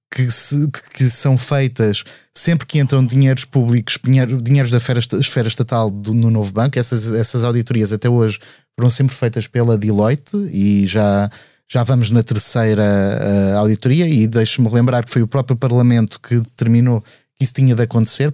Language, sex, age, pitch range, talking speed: Portuguese, male, 20-39, 115-130 Hz, 155 wpm